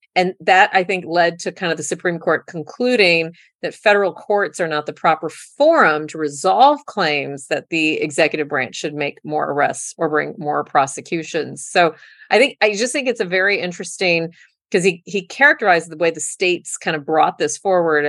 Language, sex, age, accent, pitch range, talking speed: English, female, 40-59, American, 150-190 Hz, 190 wpm